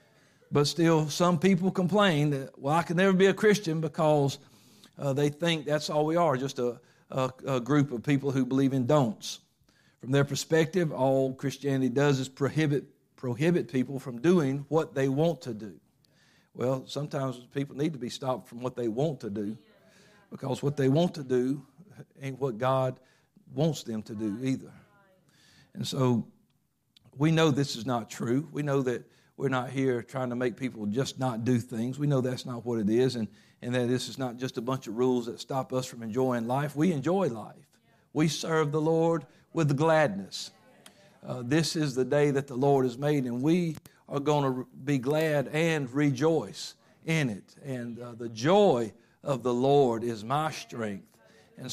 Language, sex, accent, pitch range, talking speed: English, male, American, 130-155 Hz, 190 wpm